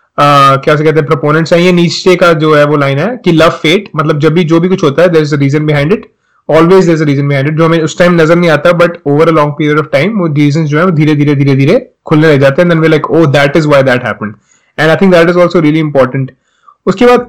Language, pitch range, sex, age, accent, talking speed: Hindi, 150-185 Hz, male, 30-49, native, 220 wpm